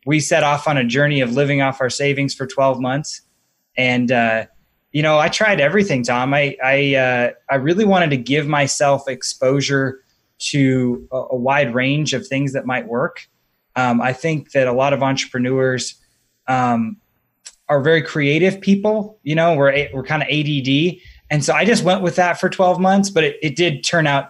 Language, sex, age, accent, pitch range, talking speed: English, male, 20-39, American, 130-160 Hz, 195 wpm